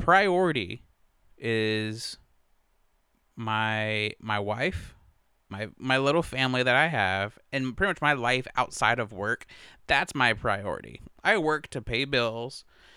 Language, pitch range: English, 105-130 Hz